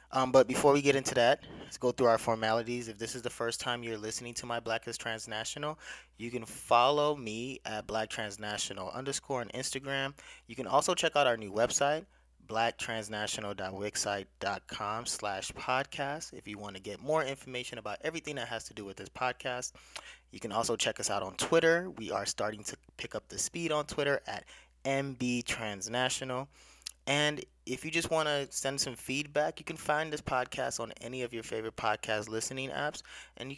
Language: English